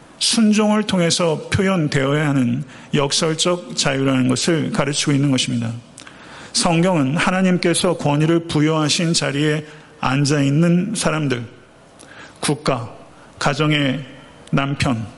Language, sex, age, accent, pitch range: Korean, male, 40-59, native, 140-170 Hz